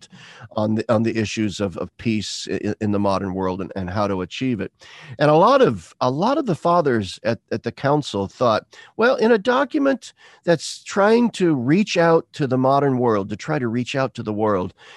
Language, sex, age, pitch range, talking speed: English, male, 50-69, 100-135 Hz, 215 wpm